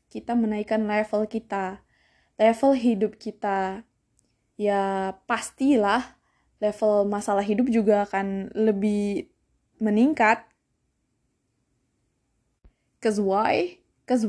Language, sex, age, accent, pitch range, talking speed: Indonesian, female, 20-39, native, 200-250 Hz, 80 wpm